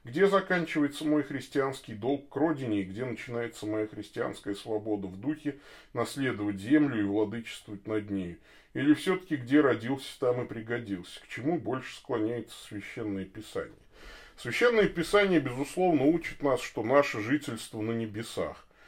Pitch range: 110-165 Hz